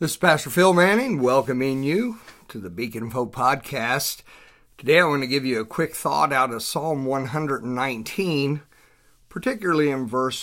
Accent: American